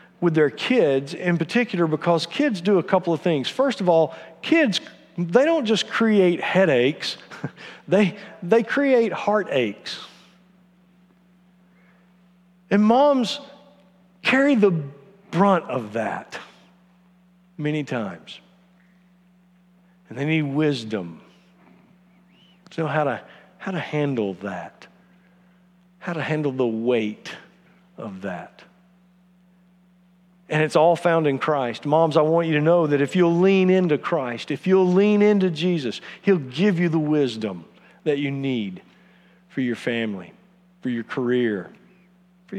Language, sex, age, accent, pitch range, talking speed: English, male, 50-69, American, 145-185 Hz, 130 wpm